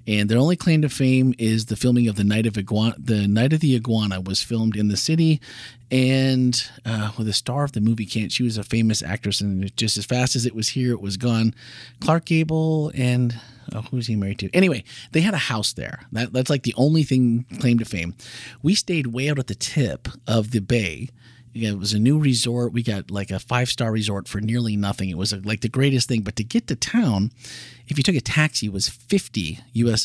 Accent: American